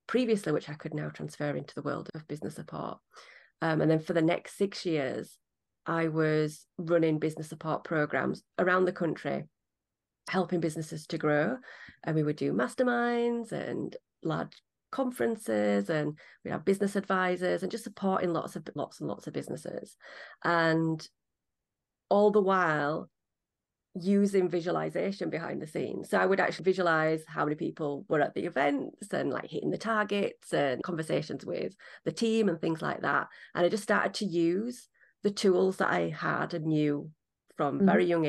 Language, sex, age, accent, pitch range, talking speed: English, female, 30-49, British, 155-200 Hz, 165 wpm